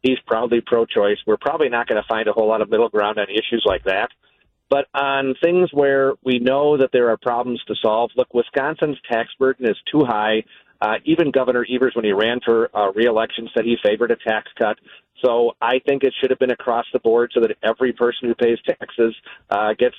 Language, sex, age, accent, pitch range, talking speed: English, male, 40-59, American, 115-140 Hz, 220 wpm